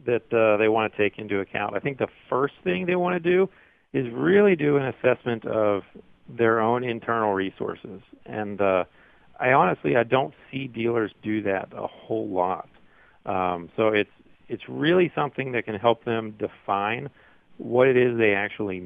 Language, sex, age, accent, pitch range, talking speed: English, male, 40-59, American, 100-120 Hz, 180 wpm